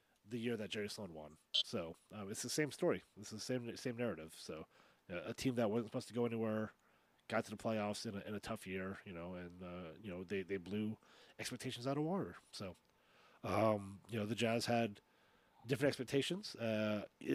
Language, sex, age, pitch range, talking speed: English, male, 30-49, 110-135 Hz, 210 wpm